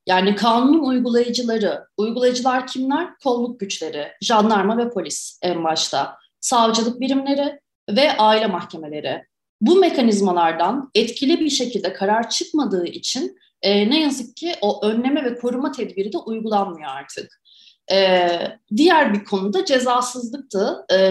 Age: 30-49